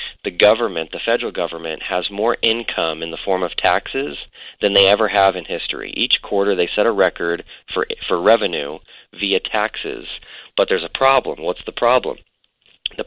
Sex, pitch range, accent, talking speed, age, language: male, 90-105 Hz, American, 175 wpm, 30-49, English